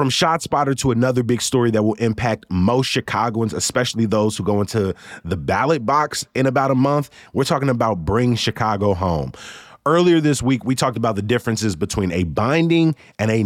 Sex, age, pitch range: male, 30-49, 100-135 Hz